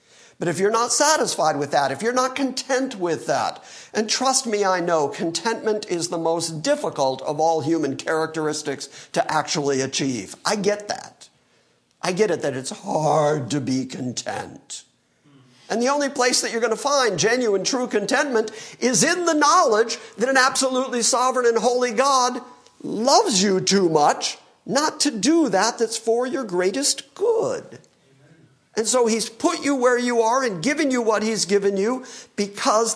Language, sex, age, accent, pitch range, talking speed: English, male, 50-69, American, 160-250 Hz, 170 wpm